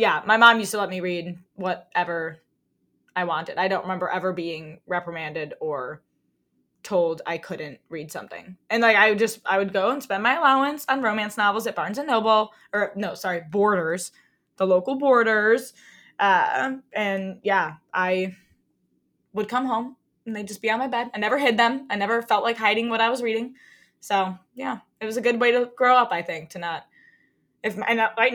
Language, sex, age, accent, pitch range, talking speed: English, female, 10-29, American, 190-255 Hz, 195 wpm